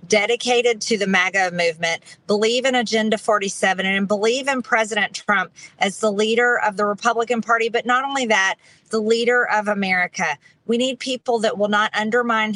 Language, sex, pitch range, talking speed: English, female, 170-220 Hz, 170 wpm